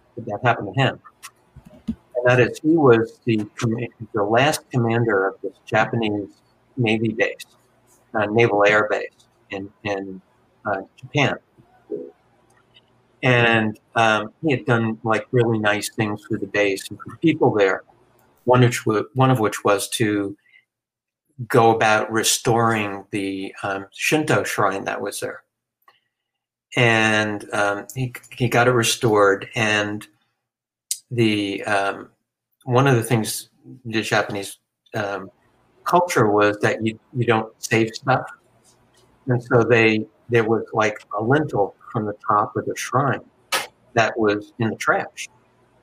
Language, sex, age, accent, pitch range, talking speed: English, male, 50-69, American, 105-125 Hz, 135 wpm